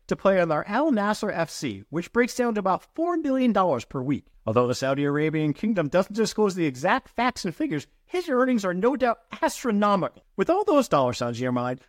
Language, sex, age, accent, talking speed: English, male, 50-69, American, 205 wpm